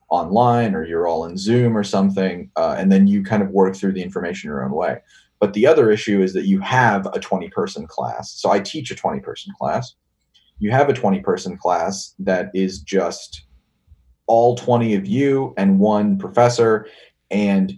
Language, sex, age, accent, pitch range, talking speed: English, male, 30-49, American, 95-120 Hz, 180 wpm